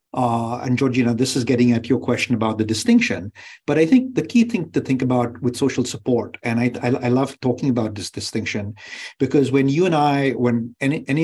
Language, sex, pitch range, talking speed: English, male, 120-150 Hz, 220 wpm